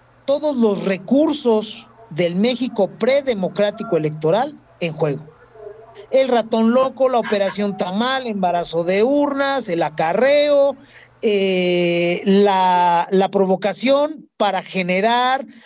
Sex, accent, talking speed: male, Mexican, 100 wpm